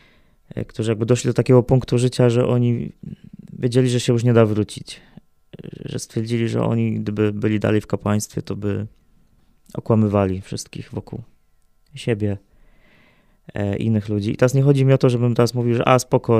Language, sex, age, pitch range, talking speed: Polish, male, 20-39, 100-125 Hz, 170 wpm